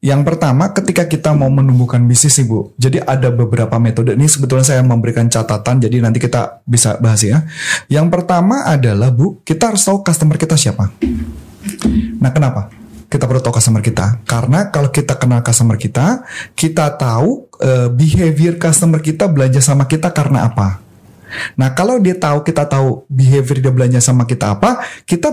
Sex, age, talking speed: male, 30-49, 165 wpm